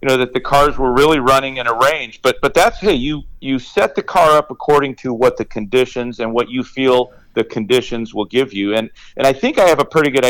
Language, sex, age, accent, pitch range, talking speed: English, male, 40-59, American, 115-145 Hz, 255 wpm